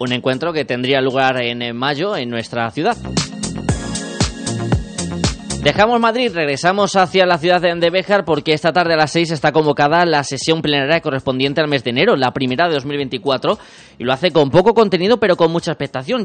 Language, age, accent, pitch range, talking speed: Spanish, 20-39, Spanish, 125-165 Hz, 175 wpm